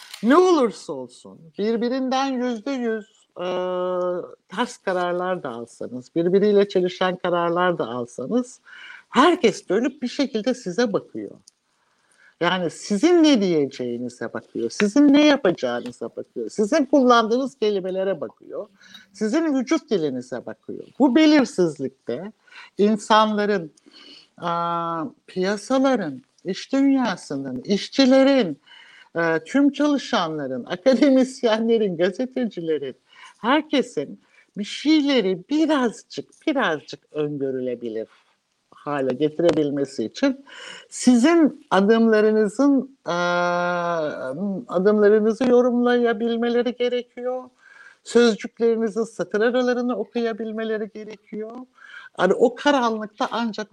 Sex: male